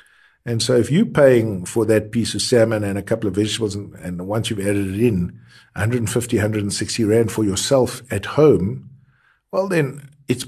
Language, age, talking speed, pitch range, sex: English, 60-79, 185 wpm, 100-125 Hz, male